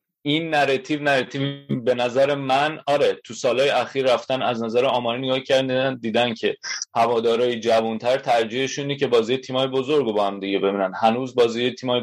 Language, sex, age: Persian, male, 30-49